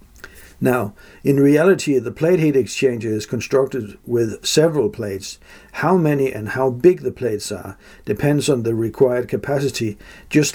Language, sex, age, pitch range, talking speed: English, male, 60-79, 115-150 Hz, 150 wpm